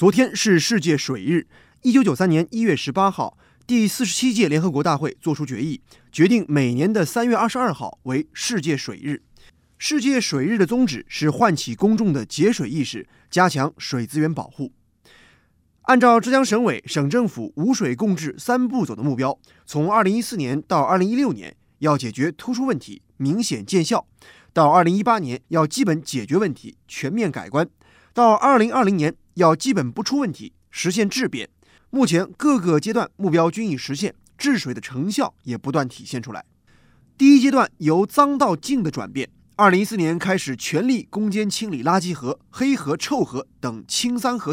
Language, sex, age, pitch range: Chinese, male, 20-39, 145-235 Hz